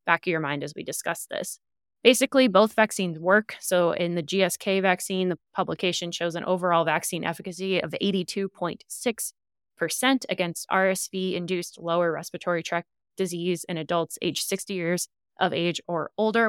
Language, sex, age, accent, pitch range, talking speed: English, female, 20-39, American, 165-200 Hz, 150 wpm